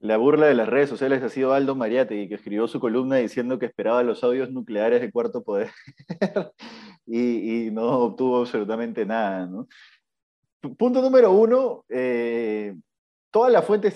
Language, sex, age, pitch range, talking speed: Spanish, male, 20-39, 110-150 Hz, 160 wpm